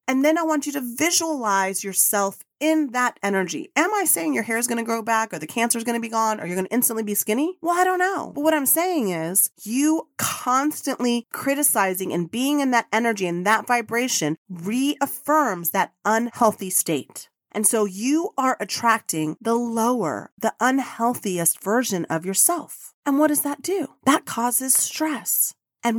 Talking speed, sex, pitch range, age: 185 wpm, female, 195-275 Hz, 30-49